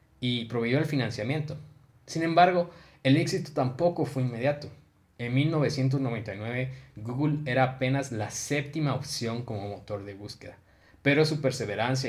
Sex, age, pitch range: male, 20-39, 115-140 Hz